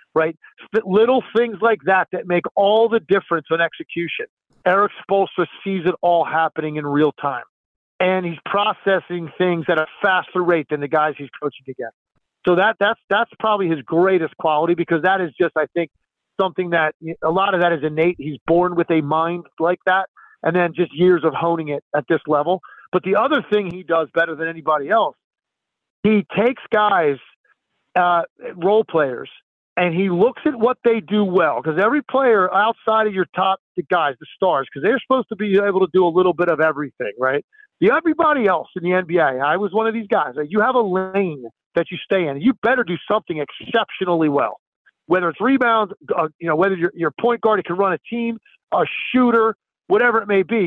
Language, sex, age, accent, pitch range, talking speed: English, male, 50-69, American, 170-220 Hz, 200 wpm